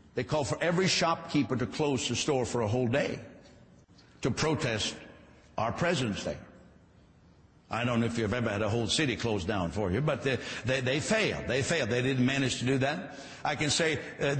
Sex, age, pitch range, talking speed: male, 60-79, 120-155 Hz, 205 wpm